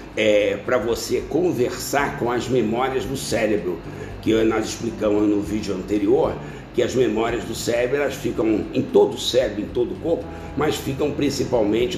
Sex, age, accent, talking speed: male, 60-79, Brazilian, 160 wpm